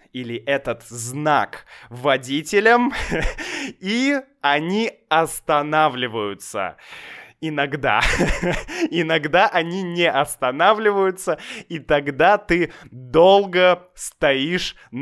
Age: 20-39